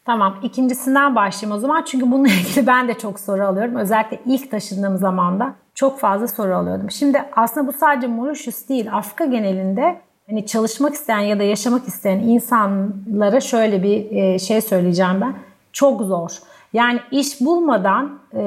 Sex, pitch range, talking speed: female, 200-260 Hz, 155 wpm